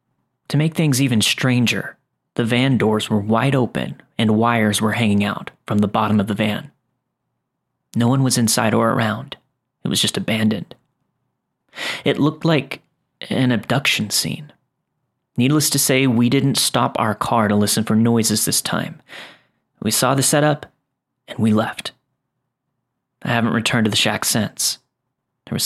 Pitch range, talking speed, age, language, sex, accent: 110-135 Hz, 160 wpm, 30-49, English, male, American